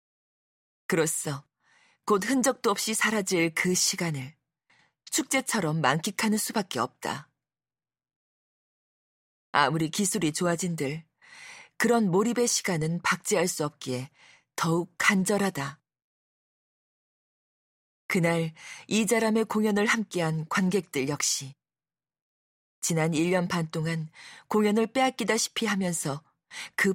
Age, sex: 40-59, female